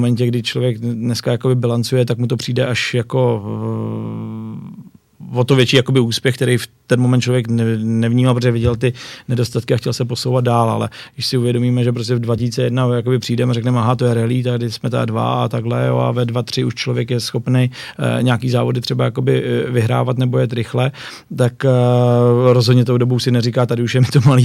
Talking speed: 200 wpm